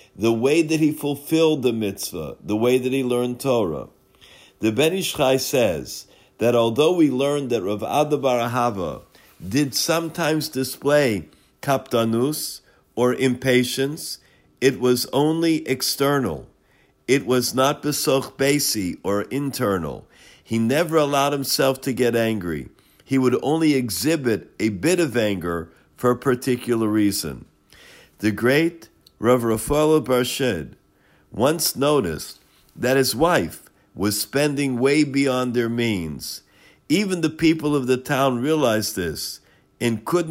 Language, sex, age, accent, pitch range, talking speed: English, male, 50-69, American, 110-145 Hz, 125 wpm